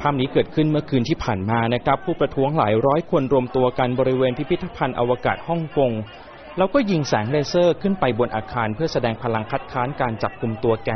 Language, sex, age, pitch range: Thai, male, 20-39, 120-155 Hz